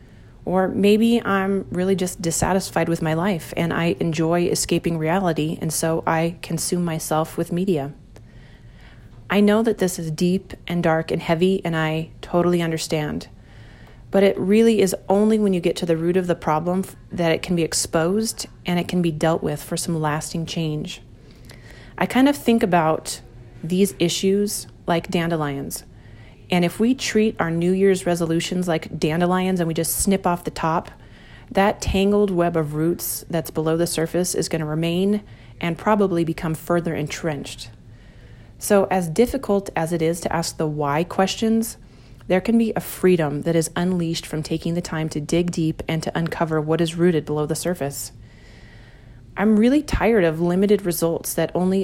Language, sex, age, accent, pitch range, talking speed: English, female, 30-49, American, 155-185 Hz, 175 wpm